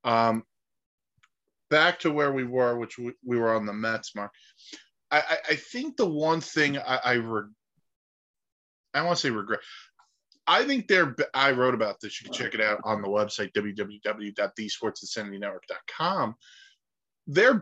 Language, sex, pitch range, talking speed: English, male, 115-160 Hz, 165 wpm